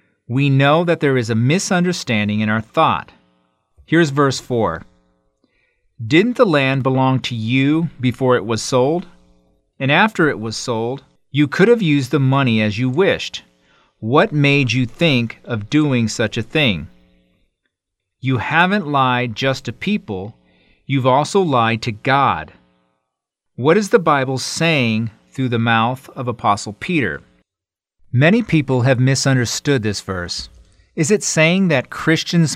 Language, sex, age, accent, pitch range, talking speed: English, male, 40-59, American, 105-150 Hz, 145 wpm